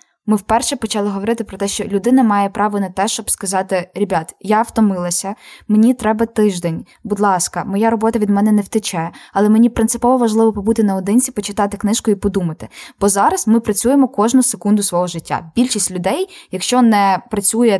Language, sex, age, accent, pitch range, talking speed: Ukrainian, female, 20-39, native, 190-230 Hz, 170 wpm